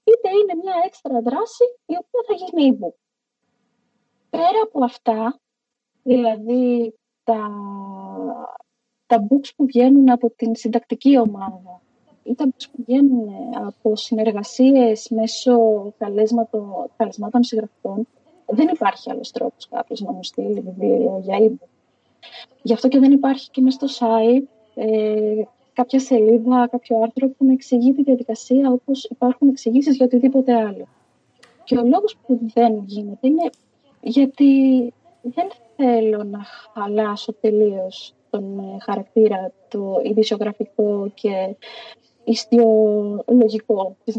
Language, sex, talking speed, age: Greek, female, 120 wpm, 20-39